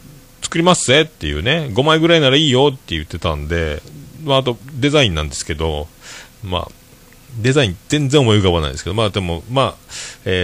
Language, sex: Japanese, male